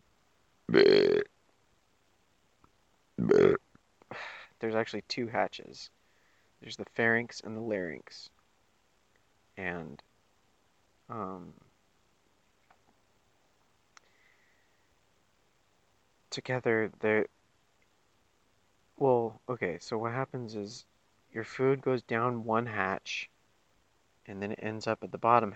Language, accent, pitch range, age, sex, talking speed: English, American, 100-120 Hz, 30-49, male, 80 wpm